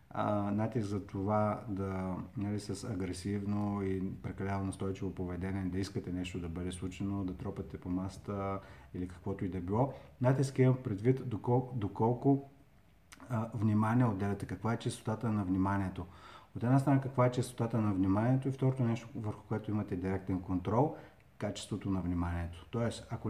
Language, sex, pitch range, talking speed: Bulgarian, male, 95-125 Hz, 155 wpm